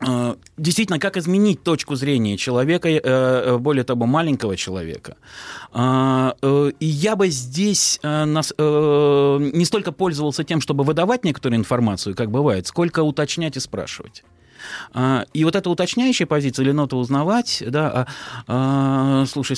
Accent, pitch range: native, 120-160 Hz